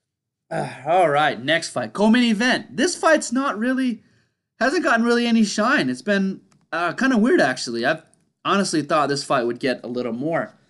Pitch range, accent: 130-185 Hz, American